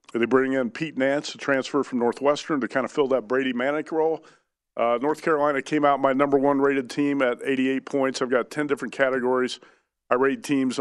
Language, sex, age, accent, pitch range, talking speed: English, male, 40-59, American, 120-140 Hz, 210 wpm